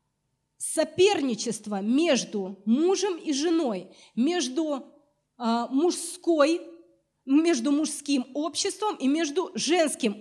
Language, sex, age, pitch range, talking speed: Russian, female, 30-49, 235-310 Hz, 70 wpm